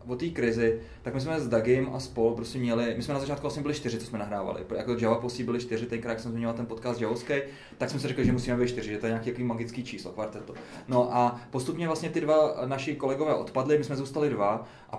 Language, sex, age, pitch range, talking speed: Czech, male, 20-39, 120-135 Hz, 250 wpm